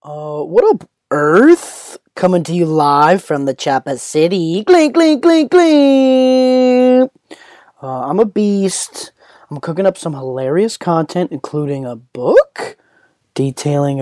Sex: male